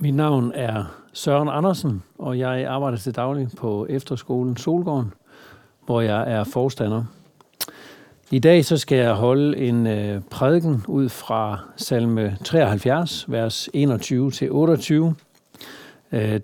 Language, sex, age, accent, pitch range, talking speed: Danish, male, 60-79, native, 120-145 Hz, 115 wpm